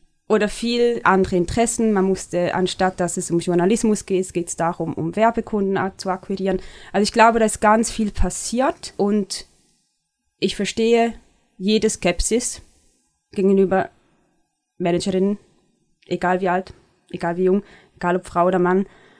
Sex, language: female, German